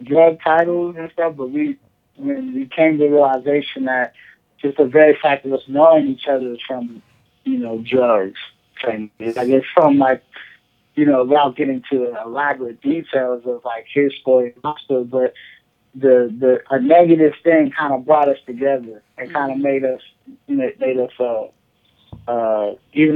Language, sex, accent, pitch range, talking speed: English, male, American, 120-145 Hz, 175 wpm